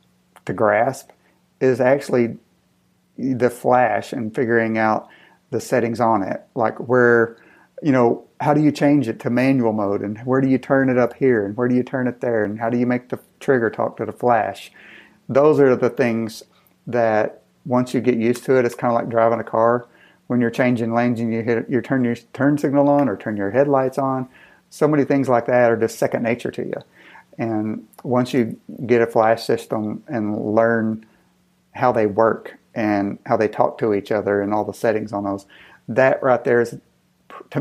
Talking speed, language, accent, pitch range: 205 wpm, English, American, 110-130 Hz